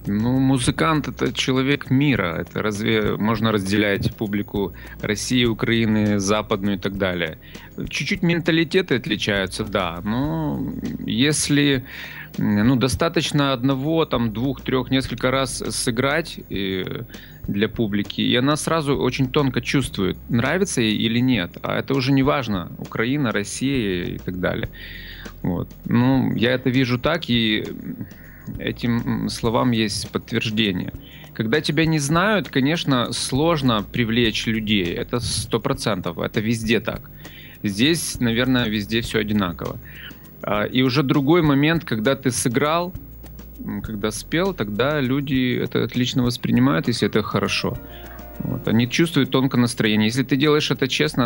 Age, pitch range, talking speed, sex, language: 30-49, 110-140 Hz, 130 wpm, male, Russian